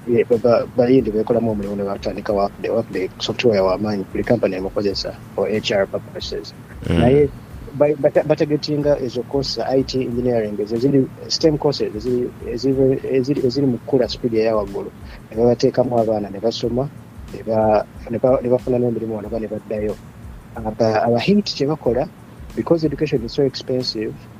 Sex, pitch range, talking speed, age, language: male, 110-135 Hz, 115 wpm, 30-49, English